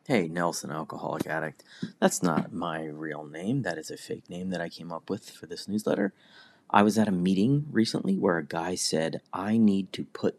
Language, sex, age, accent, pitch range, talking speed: English, male, 30-49, American, 85-105 Hz, 210 wpm